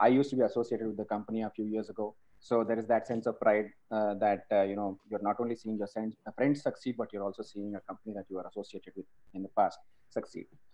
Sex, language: male, Kannada